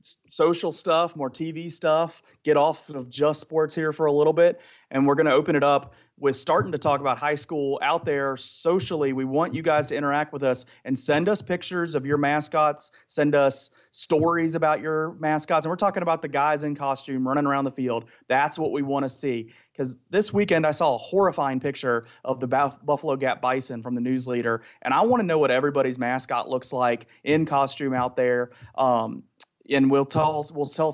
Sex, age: male, 30-49